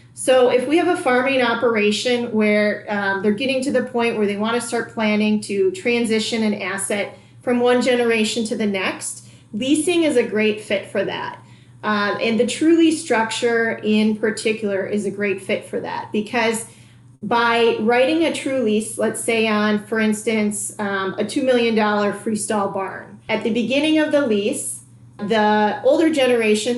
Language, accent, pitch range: English, American, 210-260 Hz